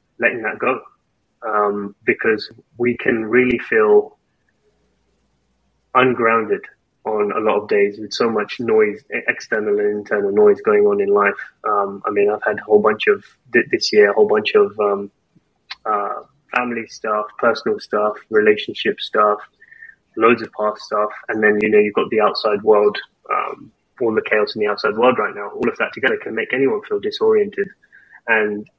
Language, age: English, 20-39